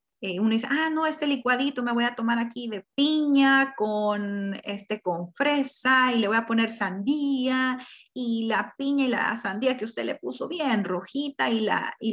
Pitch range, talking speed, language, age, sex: 215-270 Hz, 195 wpm, Spanish, 30-49, female